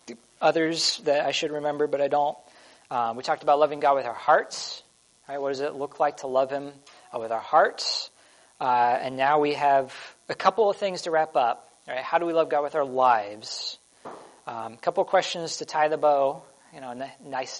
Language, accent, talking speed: English, American, 215 wpm